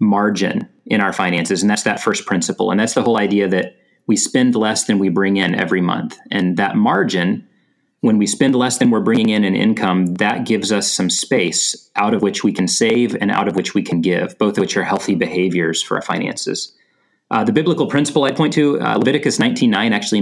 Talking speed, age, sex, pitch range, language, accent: 230 wpm, 30-49, male, 100-125 Hz, English, American